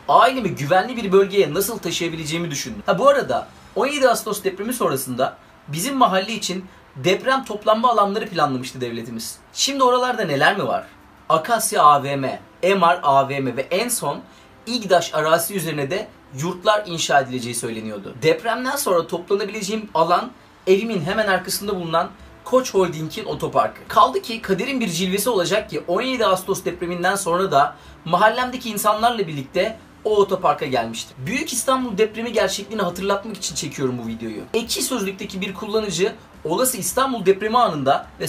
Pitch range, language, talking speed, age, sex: 165-215 Hz, Turkish, 140 wpm, 30-49, male